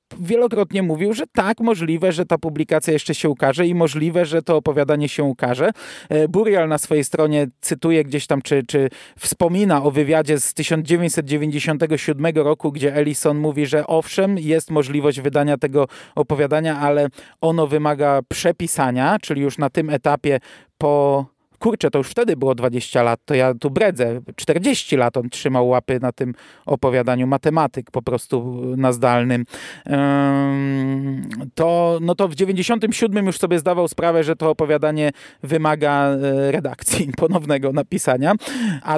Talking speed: 145 wpm